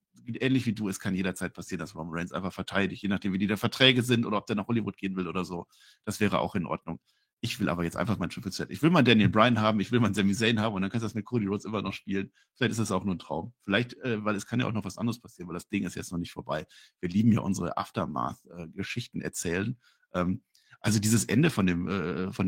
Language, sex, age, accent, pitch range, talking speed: German, male, 50-69, German, 100-150 Hz, 265 wpm